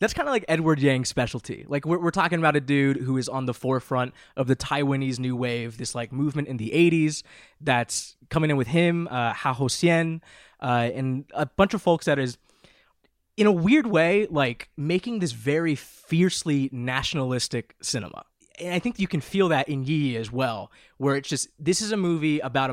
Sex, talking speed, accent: male, 205 wpm, American